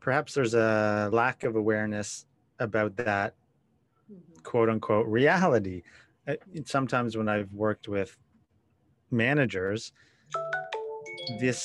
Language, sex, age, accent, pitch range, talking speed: English, male, 30-49, American, 110-130 Hz, 95 wpm